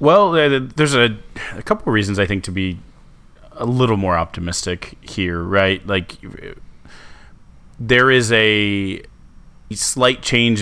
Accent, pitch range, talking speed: American, 85-100 Hz, 130 wpm